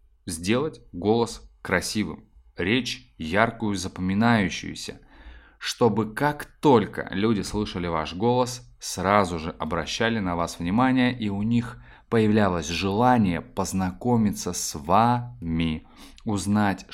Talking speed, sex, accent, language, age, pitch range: 100 wpm, male, native, Russian, 20-39, 85-120 Hz